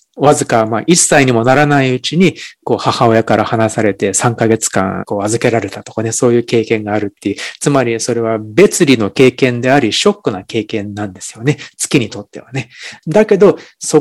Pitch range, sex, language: 115-160 Hz, male, Japanese